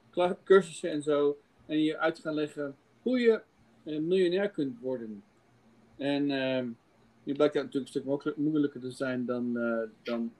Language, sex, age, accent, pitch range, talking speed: English, male, 50-69, Dutch, 125-170 Hz, 160 wpm